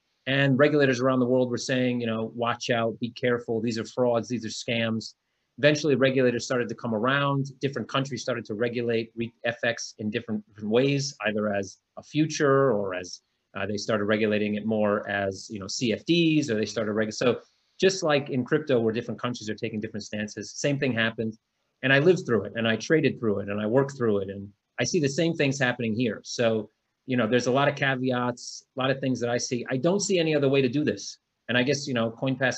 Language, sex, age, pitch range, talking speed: English, male, 30-49, 110-135 Hz, 225 wpm